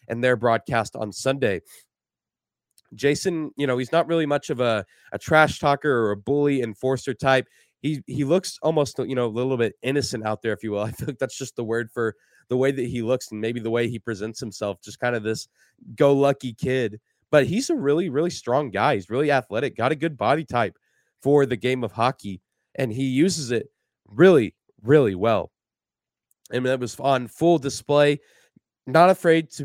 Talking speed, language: 200 wpm, English